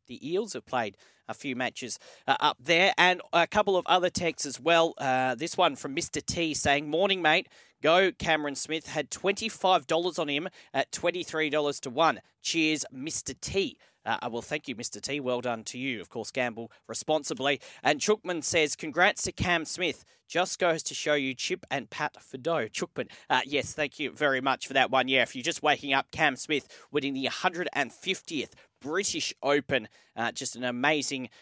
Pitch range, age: 135-180 Hz, 40-59